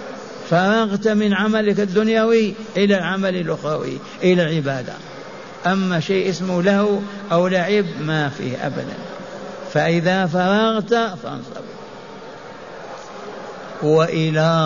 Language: Arabic